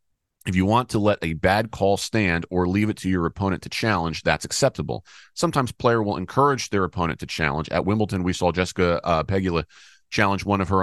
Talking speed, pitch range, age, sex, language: 210 wpm, 85-105 Hz, 40-59, male, English